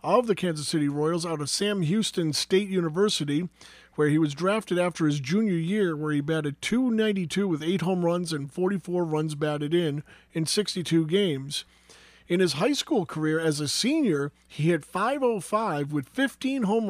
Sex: male